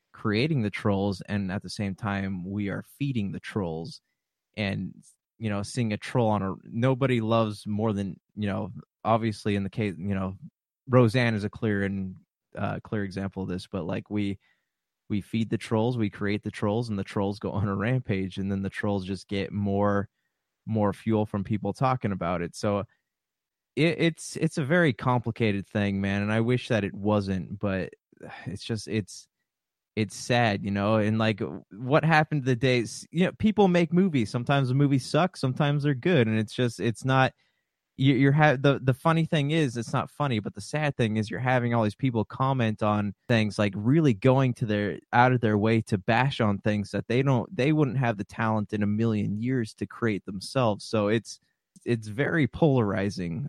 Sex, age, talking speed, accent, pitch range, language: male, 20-39, 200 wpm, American, 100-130 Hz, English